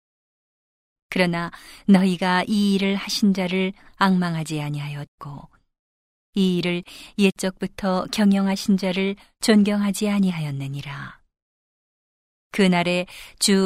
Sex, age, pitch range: female, 40-59, 165-195 Hz